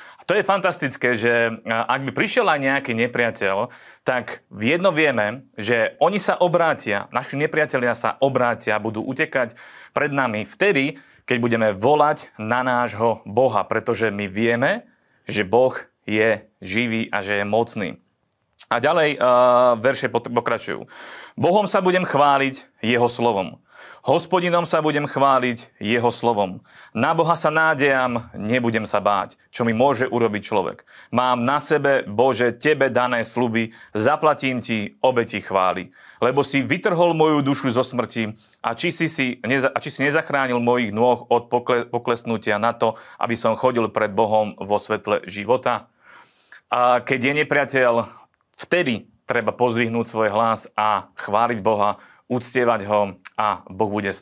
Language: Slovak